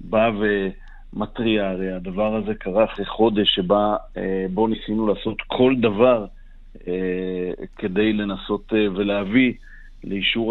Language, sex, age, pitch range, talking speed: English, male, 50-69, 100-110 Hz, 105 wpm